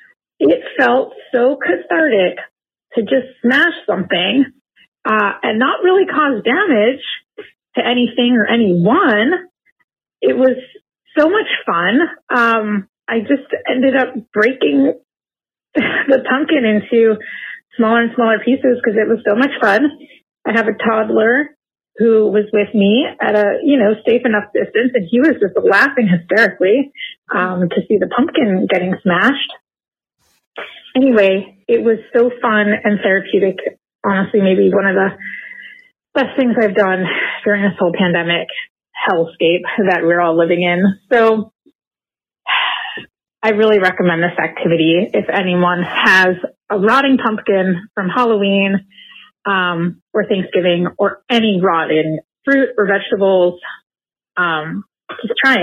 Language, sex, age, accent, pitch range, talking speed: English, female, 30-49, American, 195-260 Hz, 130 wpm